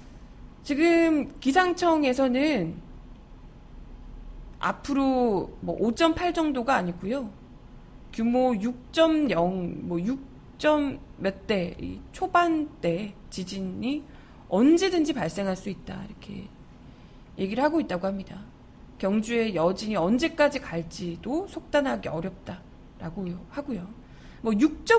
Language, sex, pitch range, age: Korean, female, 195-300 Hz, 20-39